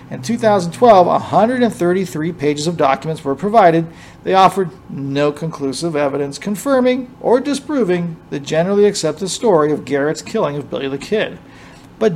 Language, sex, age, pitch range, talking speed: English, male, 50-69, 150-210 Hz, 140 wpm